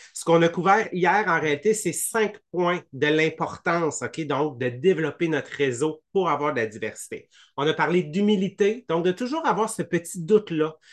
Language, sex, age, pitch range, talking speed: English, male, 30-49, 145-180 Hz, 185 wpm